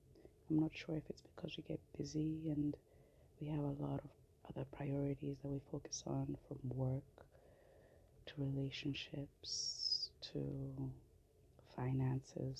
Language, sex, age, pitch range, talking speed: English, female, 30-49, 135-150 Hz, 130 wpm